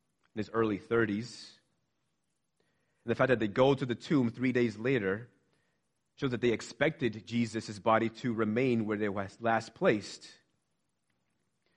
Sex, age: male, 30-49